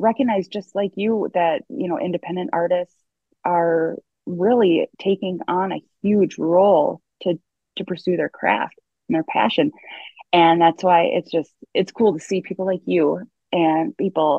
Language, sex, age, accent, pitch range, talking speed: English, female, 20-39, American, 155-190 Hz, 160 wpm